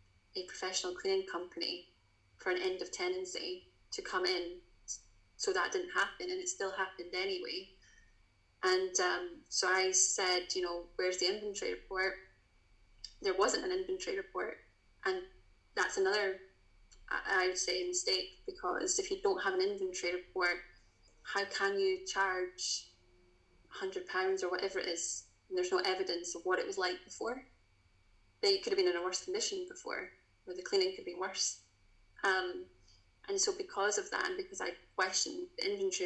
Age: 20-39